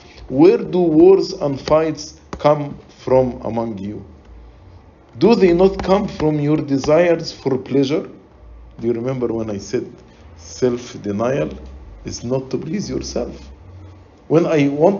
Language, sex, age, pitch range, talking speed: English, male, 50-69, 95-150 Hz, 130 wpm